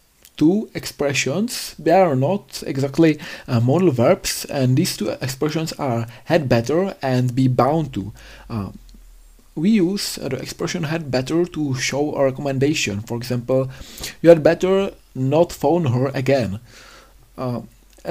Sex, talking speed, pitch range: male, 140 wpm, 125-150 Hz